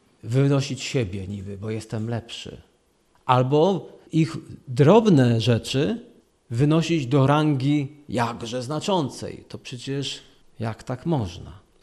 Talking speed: 100 wpm